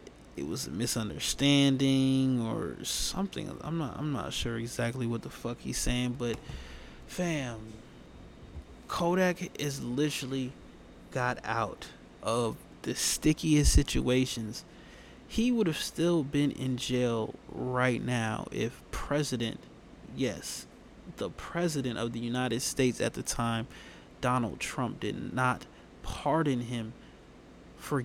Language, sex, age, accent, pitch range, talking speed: English, male, 20-39, American, 120-145 Hz, 120 wpm